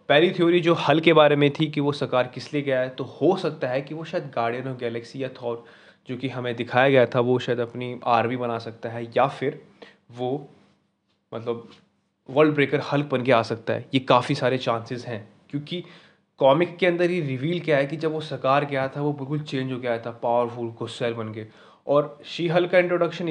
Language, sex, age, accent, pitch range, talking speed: Hindi, male, 20-39, native, 125-155 Hz, 225 wpm